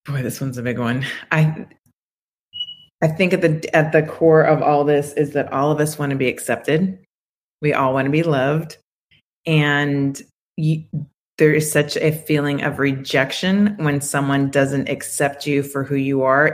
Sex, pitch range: female, 145-170 Hz